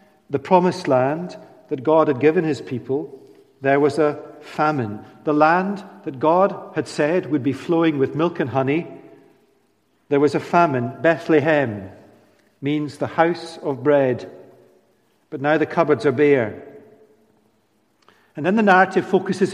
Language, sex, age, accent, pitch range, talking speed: English, male, 50-69, British, 135-165 Hz, 145 wpm